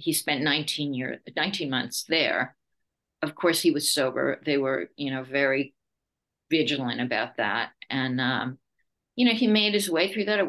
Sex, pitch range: female, 145-215 Hz